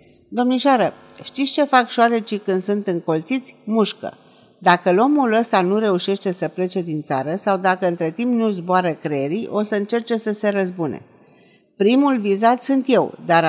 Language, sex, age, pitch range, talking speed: Romanian, female, 50-69, 175-225 Hz, 160 wpm